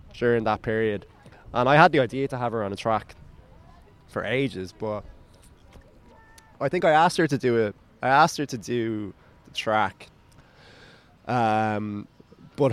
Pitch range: 100-135 Hz